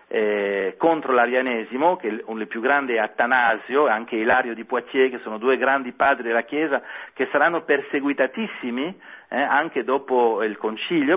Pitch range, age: 115-185 Hz, 40-59